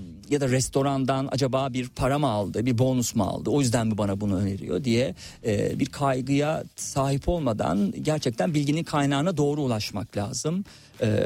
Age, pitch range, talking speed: 50-69, 110-140 Hz, 155 wpm